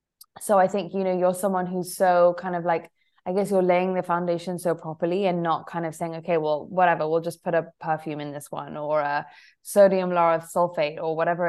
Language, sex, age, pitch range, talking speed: English, female, 20-39, 170-205 Hz, 225 wpm